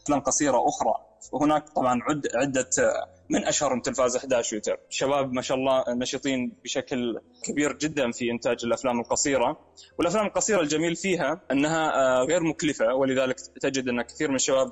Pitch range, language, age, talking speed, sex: 125-150 Hz, Arabic, 20-39, 150 wpm, male